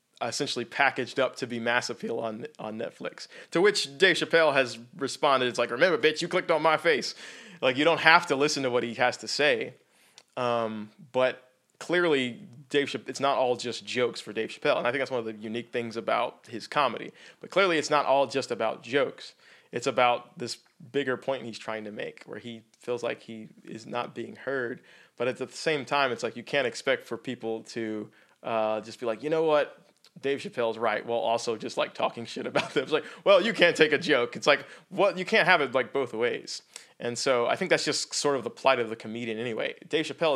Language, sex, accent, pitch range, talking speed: English, male, American, 115-140 Hz, 225 wpm